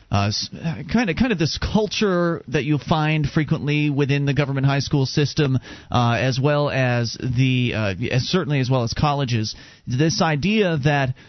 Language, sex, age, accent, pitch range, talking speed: English, male, 30-49, American, 125-155 Hz, 170 wpm